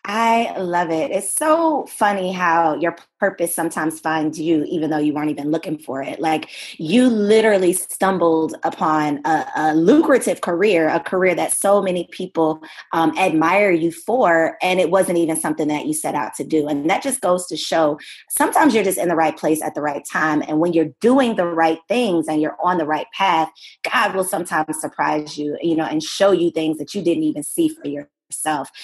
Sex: female